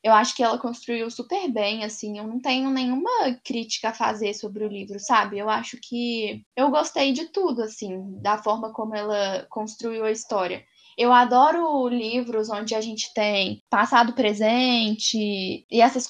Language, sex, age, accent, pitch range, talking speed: Portuguese, female, 10-29, Brazilian, 215-255 Hz, 170 wpm